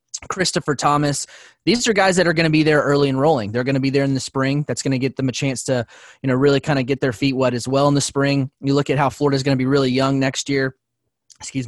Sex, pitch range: male, 130-150 Hz